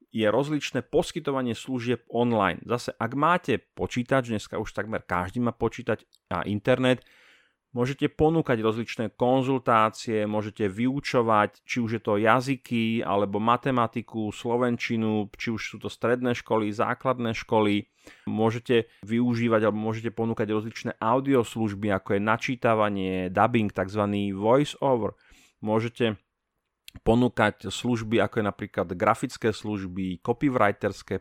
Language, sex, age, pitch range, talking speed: Slovak, male, 30-49, 105-125 Hz, 120 wpm